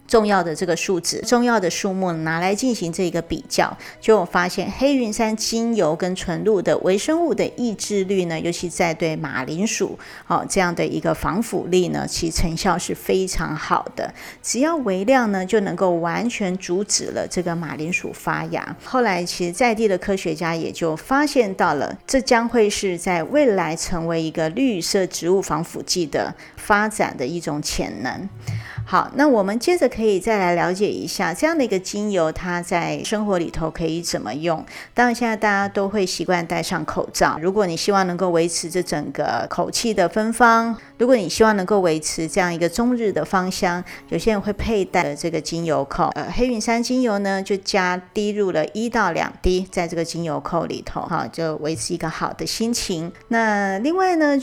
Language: Chinese